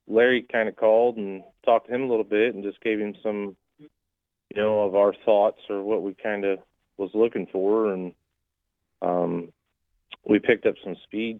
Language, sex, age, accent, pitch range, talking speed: English, male, 30-49, American, 95-115 Hz, 190 wpm